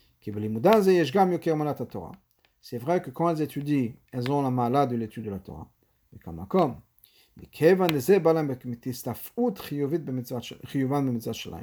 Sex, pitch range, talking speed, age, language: male, 120-155 Hz, 90 wpm, 50-69, French